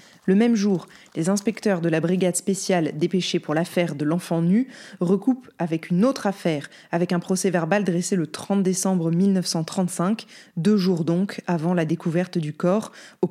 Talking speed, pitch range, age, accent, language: 170 wpm, 165-200 Hz, 20-39, French, French